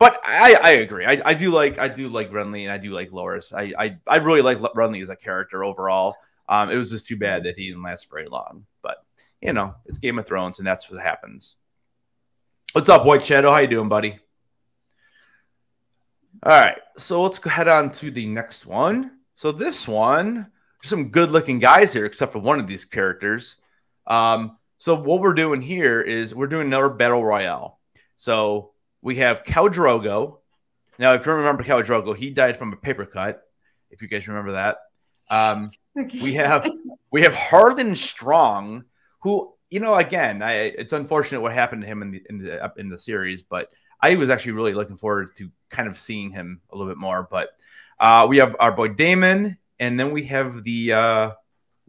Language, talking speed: English, 200 wpm